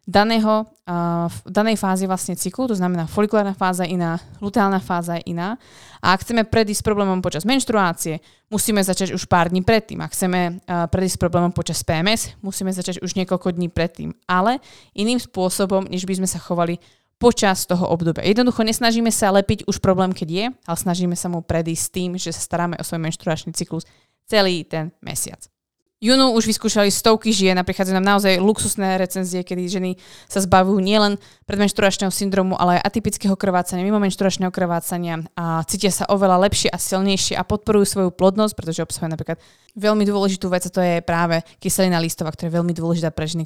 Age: 20-39